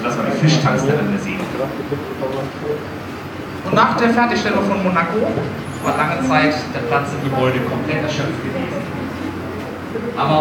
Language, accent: German, German